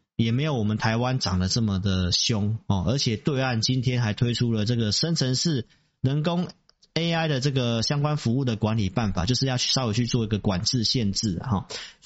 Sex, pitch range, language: male, 105-135 Hz, Chinese